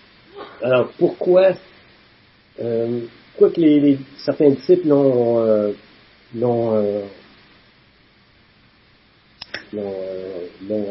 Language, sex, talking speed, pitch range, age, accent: French, male, 85 wpm, 115-175 Hz, 50-69, French